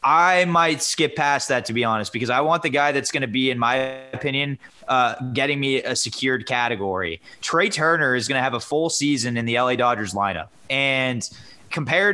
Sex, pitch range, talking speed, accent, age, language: male, 125-160 Hz, 210 wpm, American, 20-39, English